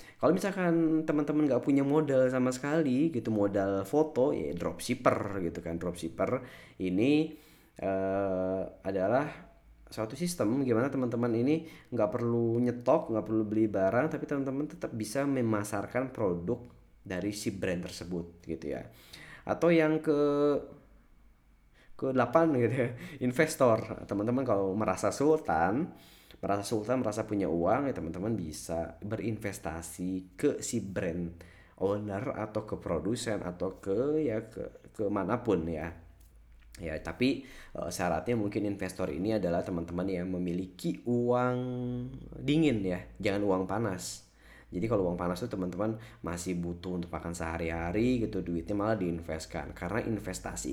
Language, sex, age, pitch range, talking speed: Indonesian, male, 20-39, 90-130 Hz, 130 wpm